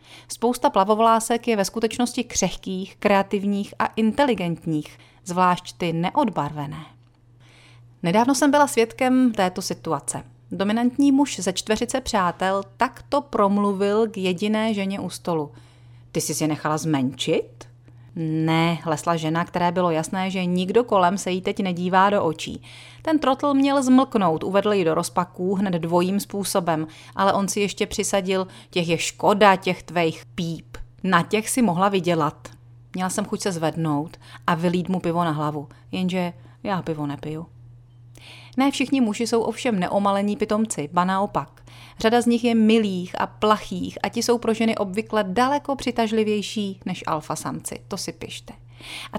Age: 30-49